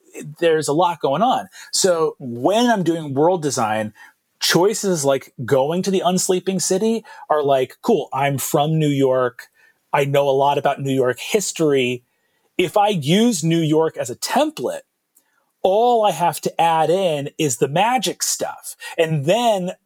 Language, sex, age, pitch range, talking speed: English, male, 30-49, 135-175 Hz, 160 wpm